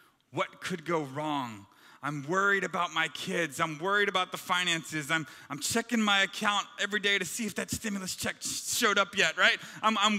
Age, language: 30-49, English